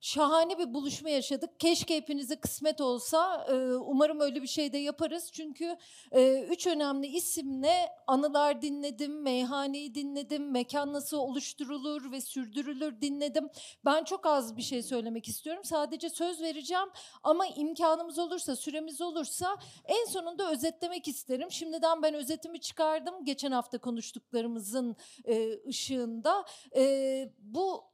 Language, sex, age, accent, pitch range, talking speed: Turkish, female, 40-59, native, 265-330 Hz, 130 wpm